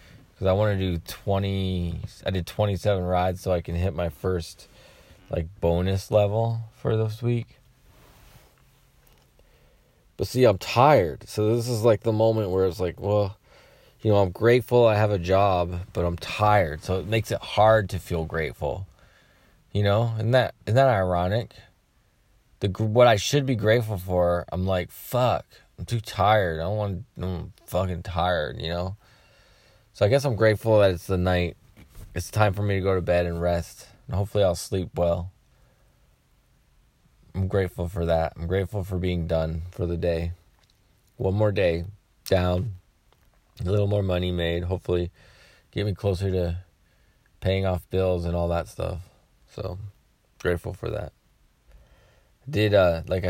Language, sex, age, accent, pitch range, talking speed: English, male, 20-39, American, 90-105 Hz, 170 wpm